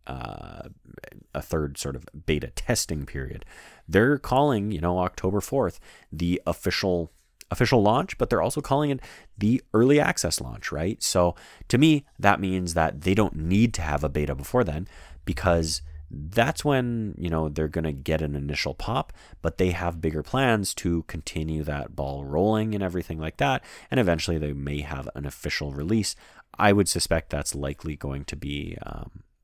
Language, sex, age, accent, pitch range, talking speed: English, male, 30-49, American, 70-90 Hz, 175 wpm